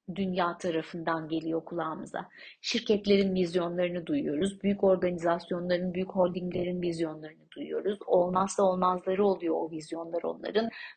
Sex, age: female, 30-49